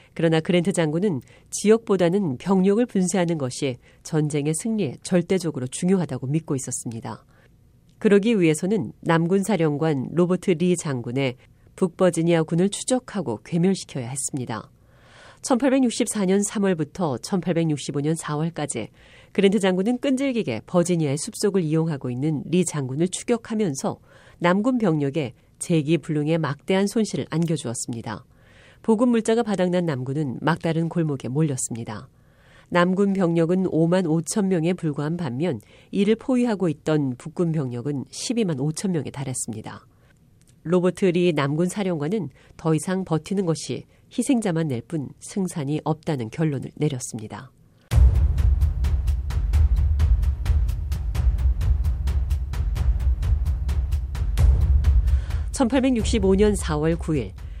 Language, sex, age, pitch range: Korean, female, 40-59, 125-185 Hz